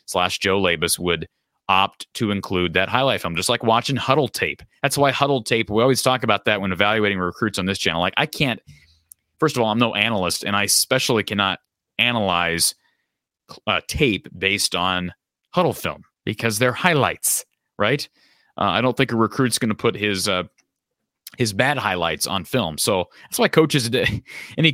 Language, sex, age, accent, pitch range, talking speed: English, male, 30-49, American, 90-120 Hz, 180 wpm